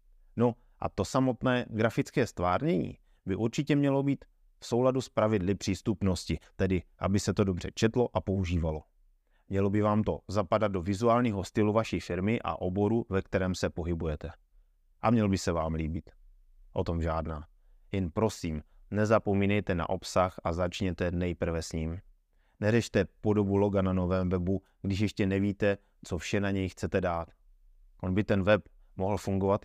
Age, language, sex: 30-49, Czech, male